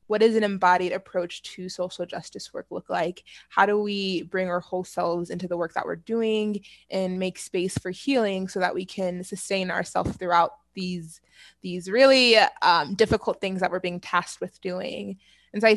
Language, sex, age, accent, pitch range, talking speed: English, female, 20-39, American, 180-210 Hz, 195 wpm